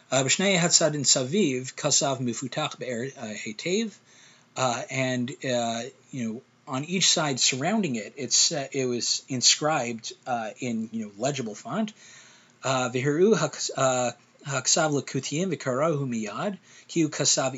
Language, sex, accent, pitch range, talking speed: English, male, American, 120-160 Hz, 95 wpm